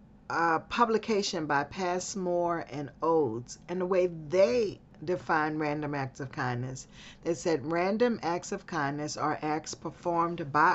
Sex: female